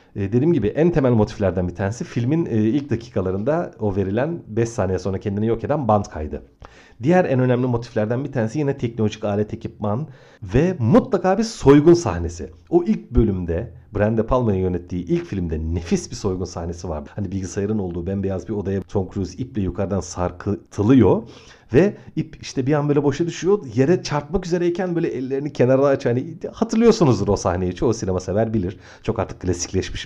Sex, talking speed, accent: male, 170 wpm, native